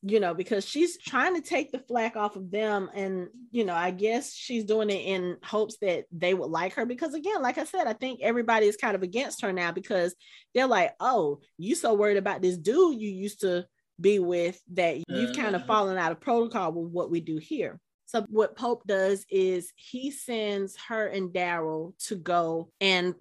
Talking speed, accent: 210 wpm, American